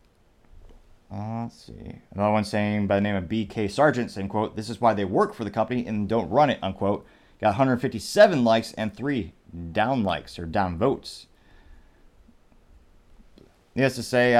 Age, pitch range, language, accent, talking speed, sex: 30-49, 100-120 Hz, English, American, 165 wpm, male